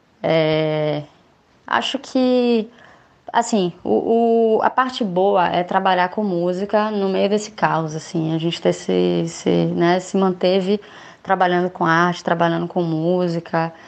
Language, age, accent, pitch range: Portuguese, 20-39, Brazilian, 170-200 Hz